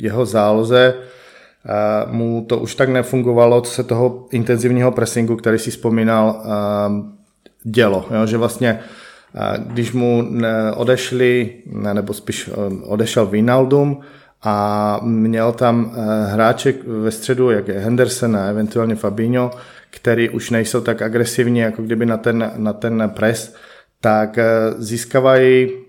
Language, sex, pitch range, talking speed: English, male, 110-125 Hz, 120 wpm